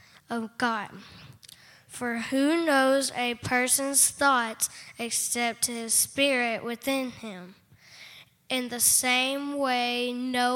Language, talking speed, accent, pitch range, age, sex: English, 100 wpm, American, 230-265 Hz, 10-29, female